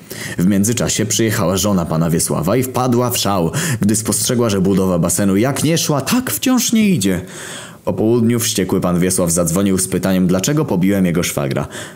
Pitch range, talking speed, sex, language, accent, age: 90-125 Hz, 170 wpm, male, Polish, native, 20-39